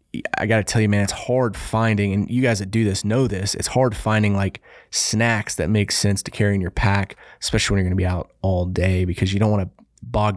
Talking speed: 260 wpm